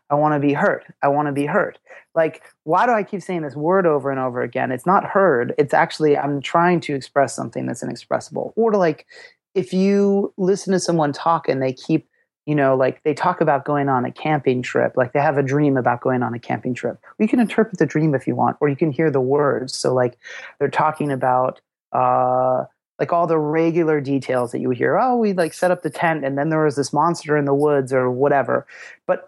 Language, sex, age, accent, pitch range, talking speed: English, male, 30-49, American, 135-175 Hz, 235 wpm